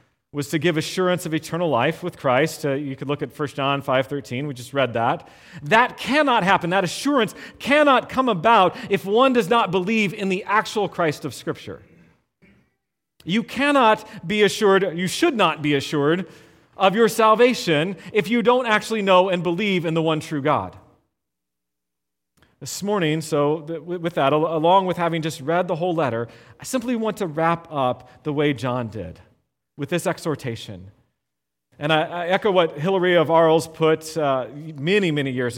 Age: 40-59